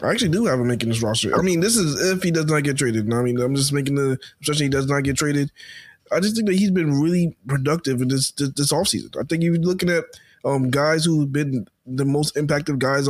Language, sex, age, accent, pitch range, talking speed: English, male, 20-39, American, 135-175 Hz, 260 wpm